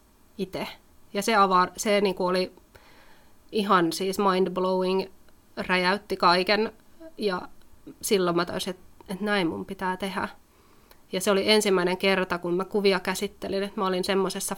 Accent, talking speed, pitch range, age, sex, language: native, 145 wpm, 185-205 Hz, 30-49, female, Finnish